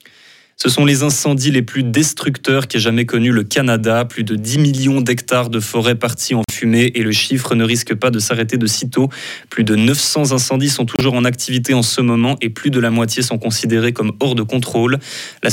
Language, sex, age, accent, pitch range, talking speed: French, male, 20-39, French, 115-135 Hz, 215 wpm